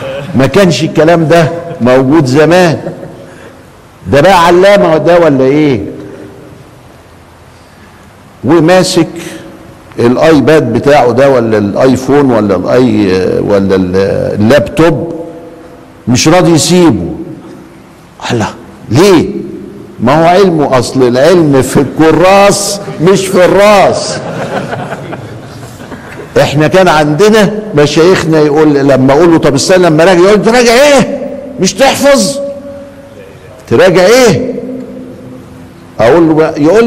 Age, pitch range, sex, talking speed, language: 50-69, 135-190 Hz, male, 100 wpm, Arabic